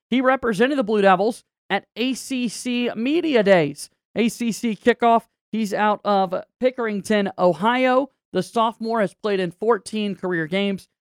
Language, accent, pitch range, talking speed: English, American, 180-225 Hz, 130 wpm